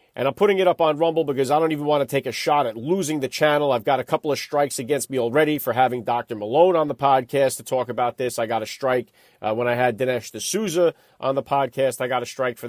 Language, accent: English, American